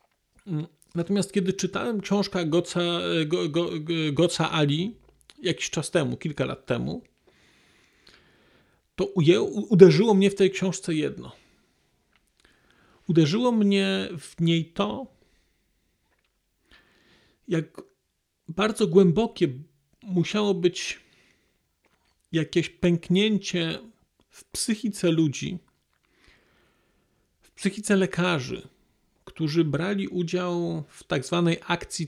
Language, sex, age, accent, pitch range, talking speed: Polish, male, 40-59, native, 155-190 Hz, 90 wpm